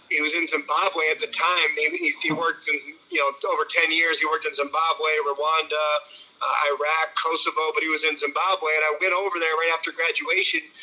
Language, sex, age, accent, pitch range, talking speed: English, male, 30-49, American, 155-220 Hz, 210 wpm